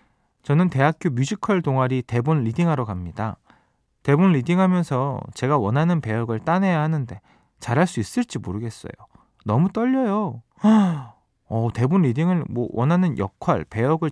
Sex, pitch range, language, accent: male, 115-180 Hz, Korean, native